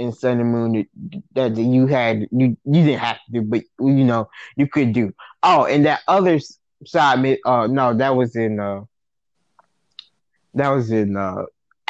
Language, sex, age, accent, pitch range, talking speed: English, male, 20-39, American, 120-140 Hz, 170 wpm